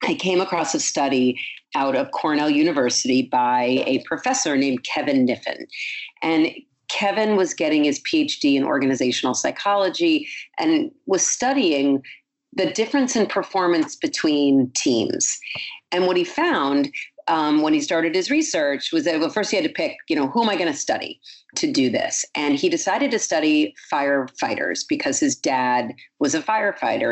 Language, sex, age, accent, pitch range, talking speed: English, female, 40-59, American, 140-220 Hz, 165 wpm